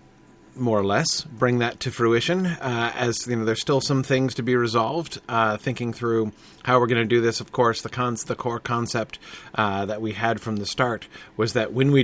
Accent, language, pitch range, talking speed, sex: American, English, 115-135 Hz, 225 wpm, male